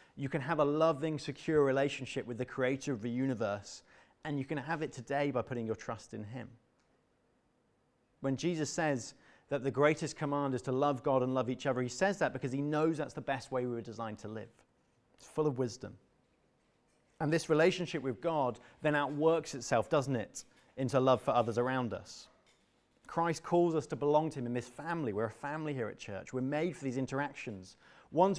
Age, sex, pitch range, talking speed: 30-49, male, 120-150 Hz, 205 wpm